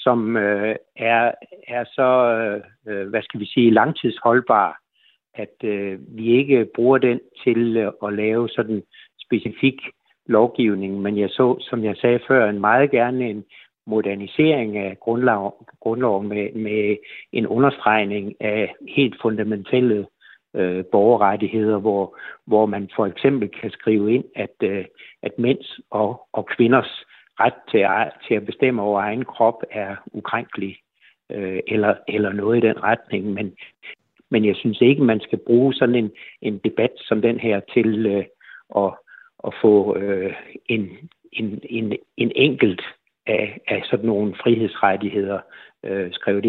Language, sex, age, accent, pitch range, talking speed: Danish, male, 60-79, native, 100-120 Hz, 135 wpm